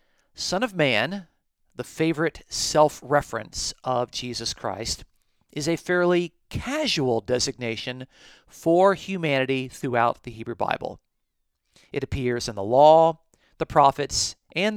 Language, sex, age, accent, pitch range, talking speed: English, male, 40-59, American, 125-165 Hz, 115 wpm